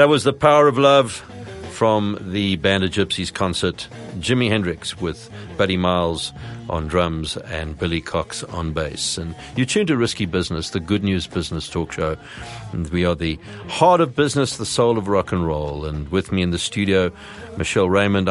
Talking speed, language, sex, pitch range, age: 185 wpm, English, male, 90-125 Hz, 50-69